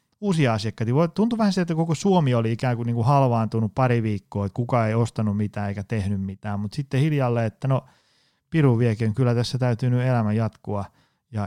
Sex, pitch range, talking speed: male, 110-145 Hz, 200 wpm